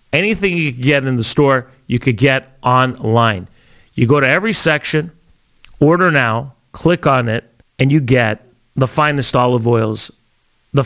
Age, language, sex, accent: 40-59, English, male, American